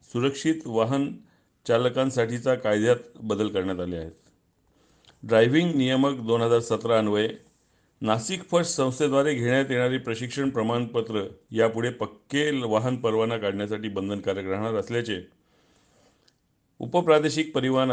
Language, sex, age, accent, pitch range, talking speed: Marathi, male, 50-69, native, 110-135 Hz, 85 wpm